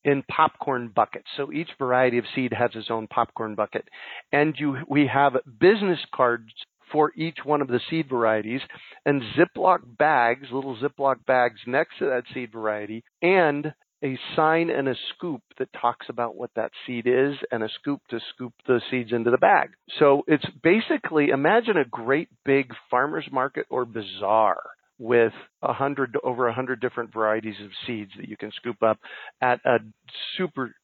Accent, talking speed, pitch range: American, 170 wpm, 120-155 Hz